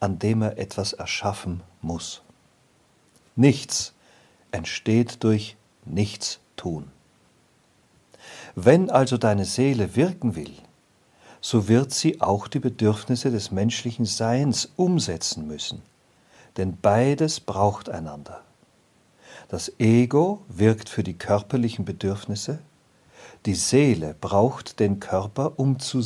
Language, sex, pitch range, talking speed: German, male, 100-135 Hz, 105 wpm